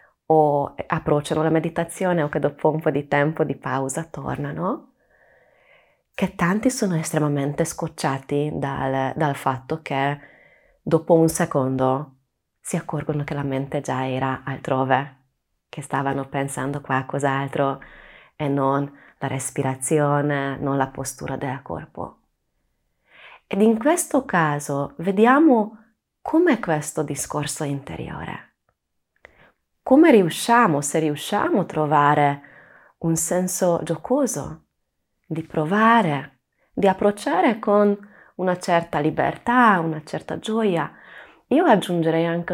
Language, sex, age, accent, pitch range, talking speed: Italian, female, 30-49, native, 140-180 Hz, 115 wpm